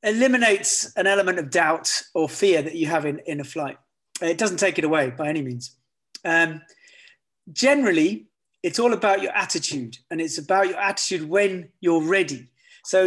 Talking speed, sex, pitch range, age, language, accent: 175 wpm, male, 165-200 Hz, 30-49, English, British